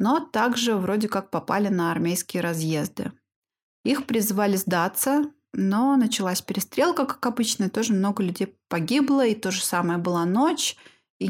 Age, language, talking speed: 20-39, Russian, 150 wpm